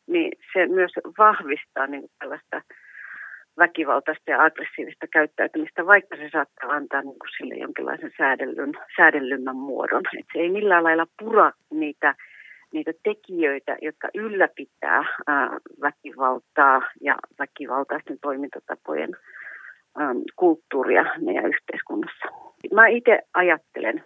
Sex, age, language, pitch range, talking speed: female, 40-59, Finnish, 145-205 Hz, 95 wpm